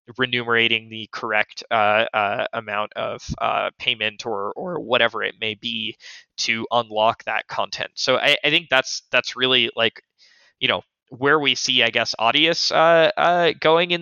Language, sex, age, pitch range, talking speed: English, male, 20-39, 110-130 Hz, 165 wpm